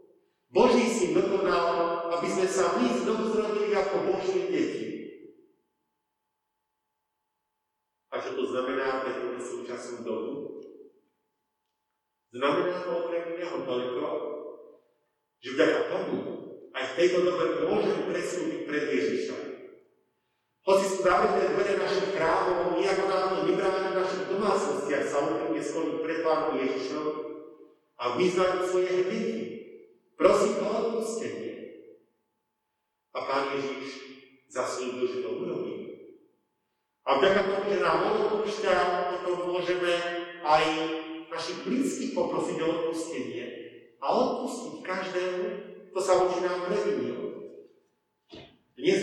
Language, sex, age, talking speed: Slovak, male, 50-69, 105 wpm